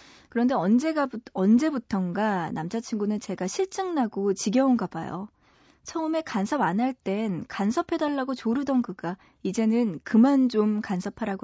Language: Korean